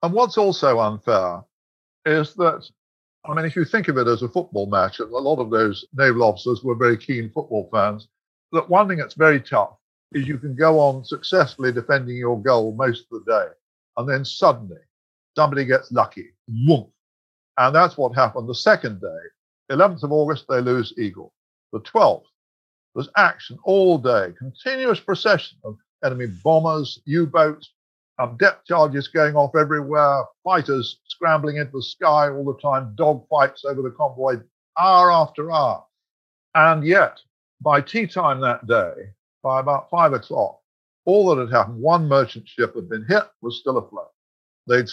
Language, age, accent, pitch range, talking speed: English, 50-69, British, 120-160 Hz, 165 wpm